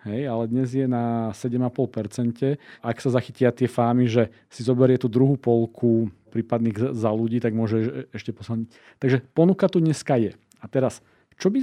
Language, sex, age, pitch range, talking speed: Slovak, male, 40-59, 115-135 Hz, 170 wpm